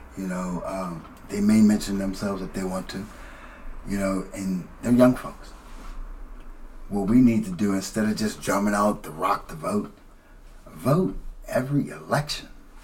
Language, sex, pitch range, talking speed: English, male, 90-110 Hz, 160 wpm